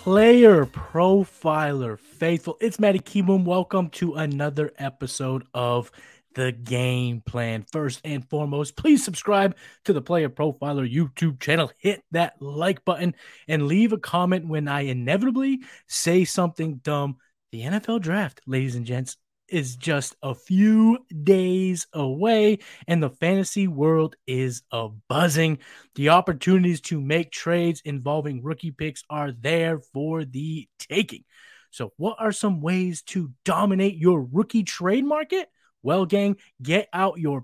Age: 20-39